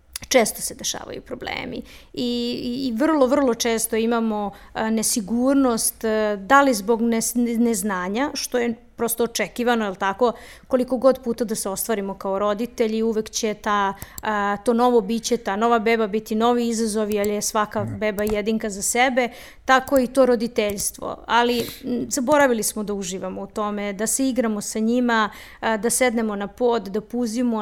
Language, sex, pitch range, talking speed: Croatian, female, 215-245 Hz, 160 wpm